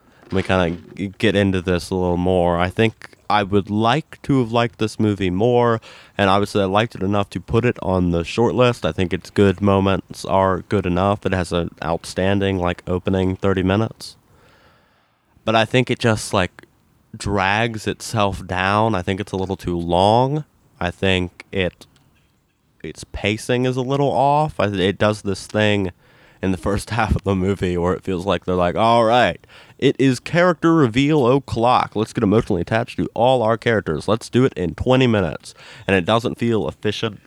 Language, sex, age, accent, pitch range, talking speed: English, male, 20-39, American, 90-115 Hz, 185 wpm